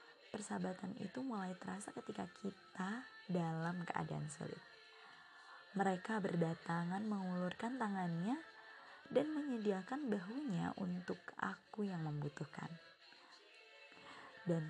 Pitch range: 165-220 Hz